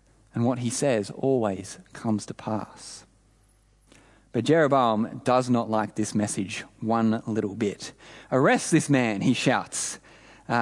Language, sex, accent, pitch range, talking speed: English, male, Australian, 110-165 Hz, 135 wpm